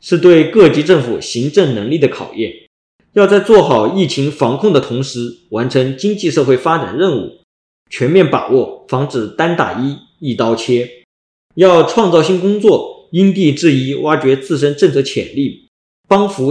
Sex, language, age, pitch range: male, Chinese, 20-39, 130-185 Hz